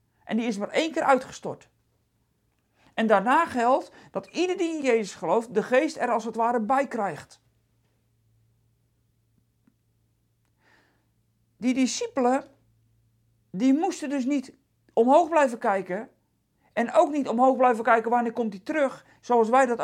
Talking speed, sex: 140 wpm, male